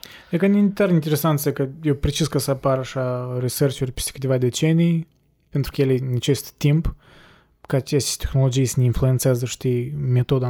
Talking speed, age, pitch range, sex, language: 170 wpm, 20-39, 130-160 Hz, male, Romanian